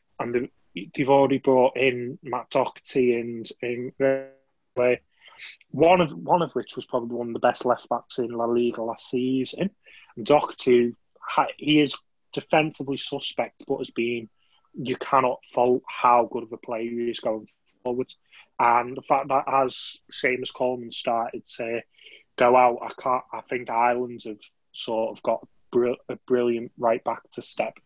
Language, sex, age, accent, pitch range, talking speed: English, male, 20-39, British, 120-130 Hz, 155 wpm